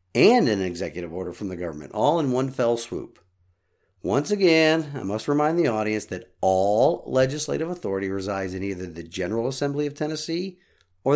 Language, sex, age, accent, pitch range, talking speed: English, male, 50-69, American, 95-130 Hz, 170 wpm